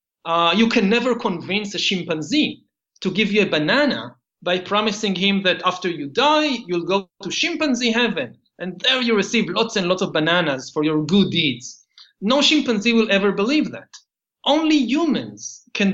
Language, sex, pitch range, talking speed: English, male, 170-230 Hz, 175 wpm